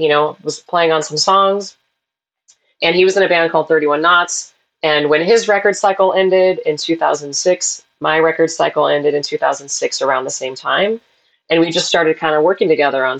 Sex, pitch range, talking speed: female, 145-170 Hz, 195 wpm